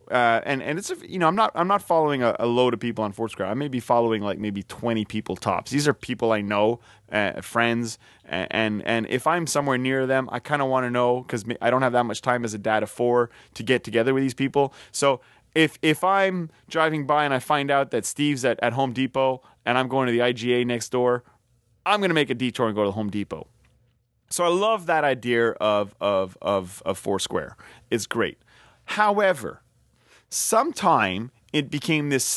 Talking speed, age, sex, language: 225 wpm, 30-49, male, English